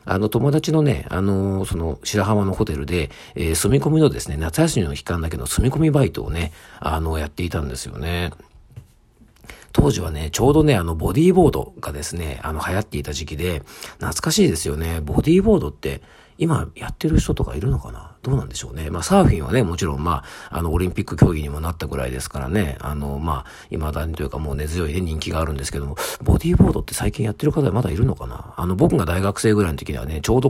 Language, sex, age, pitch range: Japanese, male, 50-69, 75-110 Hz